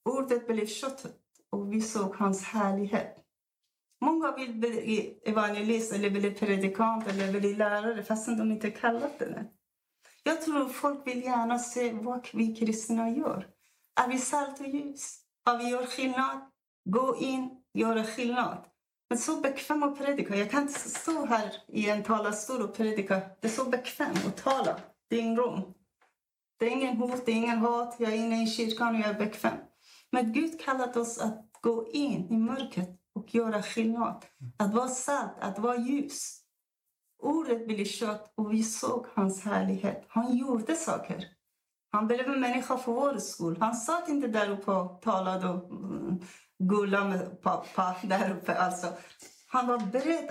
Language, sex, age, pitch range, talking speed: Swedish, female, 40-59, 210-255 Hz, 170 wpm